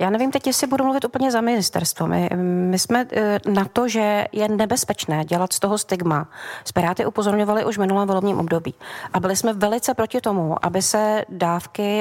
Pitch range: 180-210 Hz